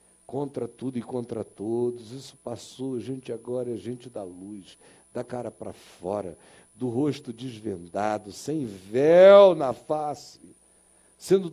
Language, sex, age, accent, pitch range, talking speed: Portuguese, male, 60-79, Brazilian, 115-180 Hz, 135 wpm